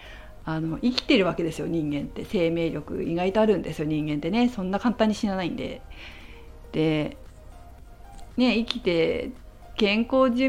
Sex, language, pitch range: female, Japanese, 160-230 Hz